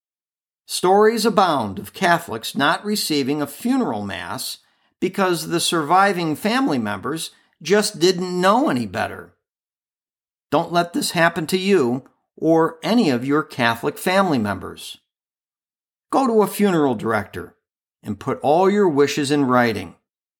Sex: male